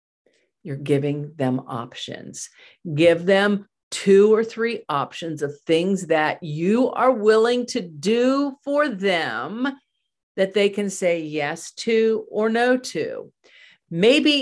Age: 50-69